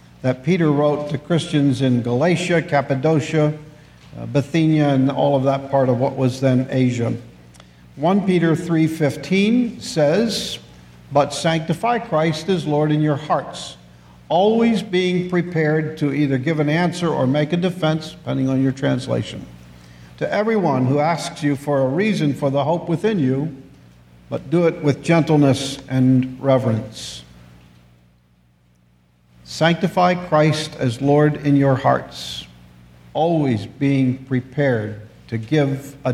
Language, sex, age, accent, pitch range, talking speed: English, male, 50-69, American, 115-155 Hz, 135 wpm